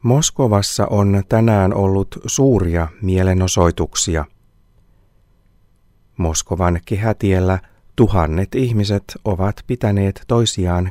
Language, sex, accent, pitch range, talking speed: Finnish, male, native, 90-105 Hz, 70 wpm